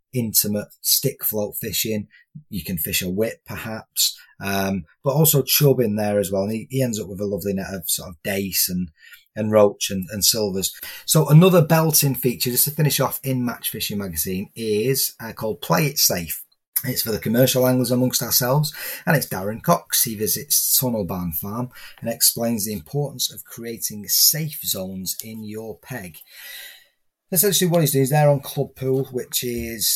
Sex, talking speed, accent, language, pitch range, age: male, 185 wpm, British, English, 100-135 Hz, 30-49